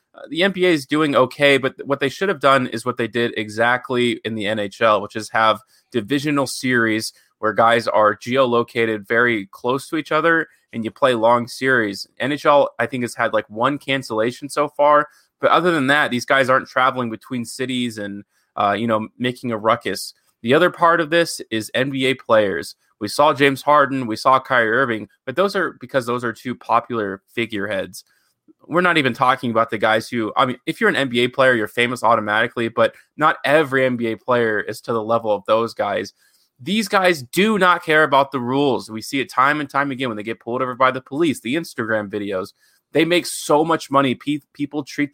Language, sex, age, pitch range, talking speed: English, male, 20-39, 115-145 Hz, 205 wpm